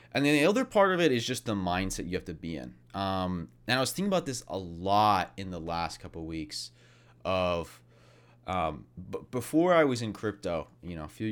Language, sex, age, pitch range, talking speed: English, male, 30-49, 80-115 Hz, 230 wpm